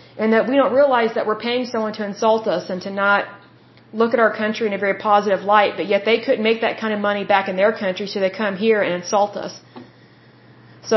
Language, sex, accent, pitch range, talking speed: Bengali, female, American, 200-235 Hz, 245 wpm